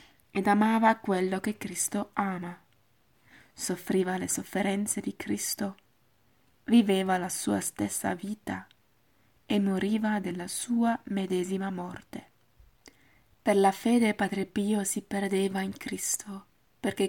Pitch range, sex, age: 175-210 Hz, female, 20-39